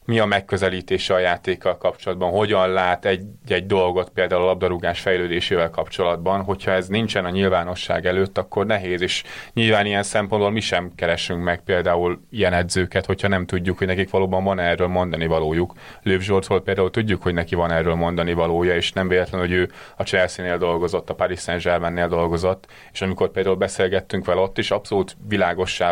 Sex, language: male, Hungarian